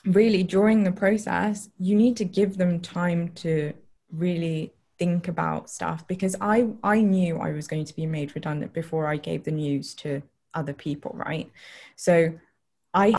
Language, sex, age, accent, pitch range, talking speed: English, female, 20-39, British, 165-200 Hz, 170 wpm